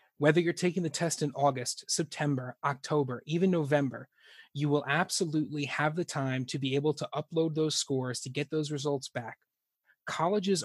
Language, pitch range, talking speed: English, 135-160 Hz, 170 wpm